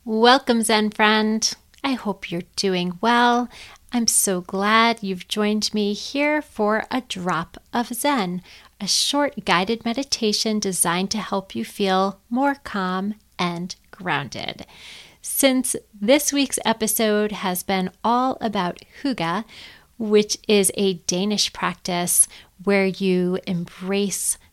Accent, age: American, 30-49